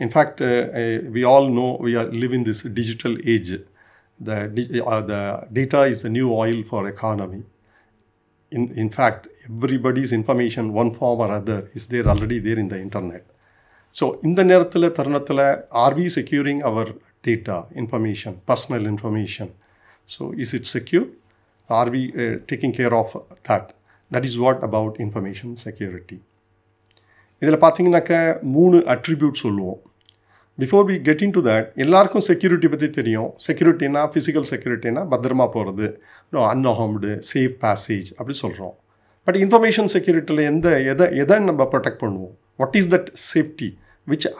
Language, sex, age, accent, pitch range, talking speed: Tamil, male, 50-69, native, 110-145 Hz, 150 wpm